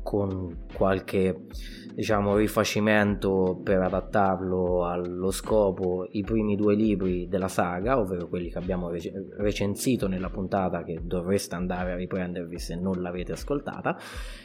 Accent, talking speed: native, 125 wpm